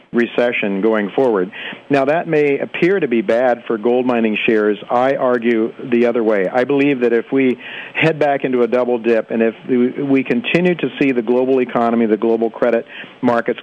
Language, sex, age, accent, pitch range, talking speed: English, male, 50-69, American, 110-135 Hz, 190 wpm